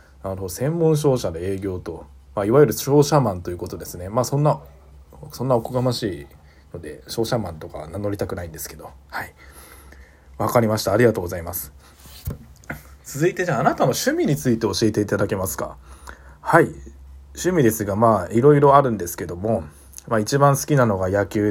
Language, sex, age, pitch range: Japanese, male, 20-39, 80-120 Hz